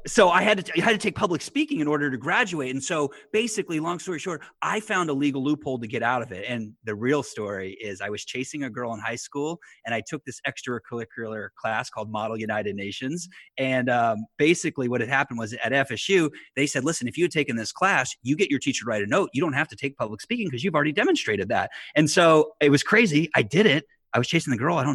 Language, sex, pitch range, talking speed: English, male, 110-150 Hz, 255 wpm